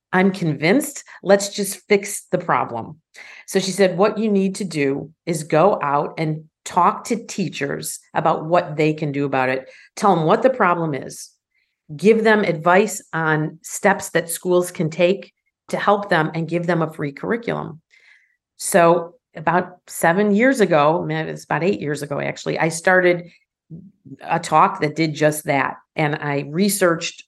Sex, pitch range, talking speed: female, 155-190 Hz, 165 wpm